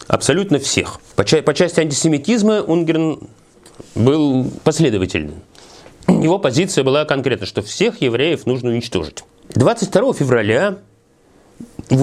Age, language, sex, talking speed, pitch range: 30-49, Russian, male, 110 wpm, 125-185 Hz